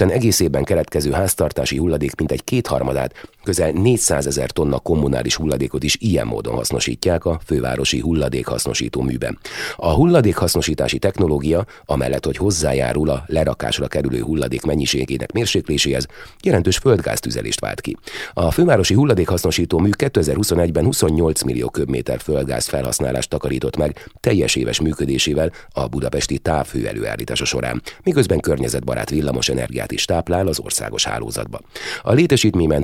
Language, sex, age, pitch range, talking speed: Hungarian, male, 30-49, 65-85 Hz, 125 wpm